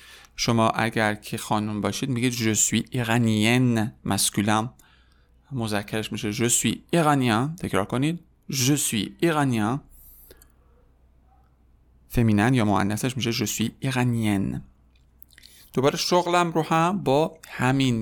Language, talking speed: Persian, 85 wpm